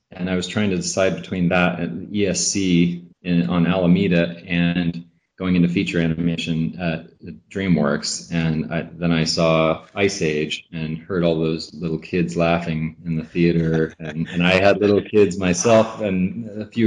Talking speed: 165 wpm